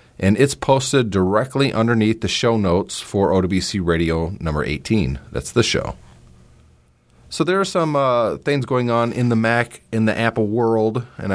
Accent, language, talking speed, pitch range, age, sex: American, English, 170 wpm, 85-115 Hz, 30-49, male